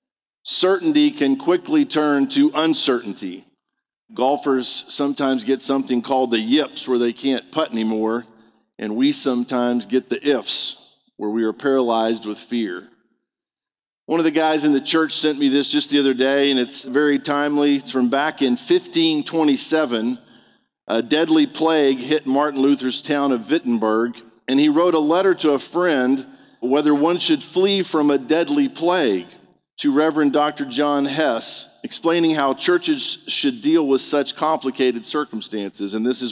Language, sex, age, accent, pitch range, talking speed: English, male, 50-69, American, 130-165 Hz, 155 wpm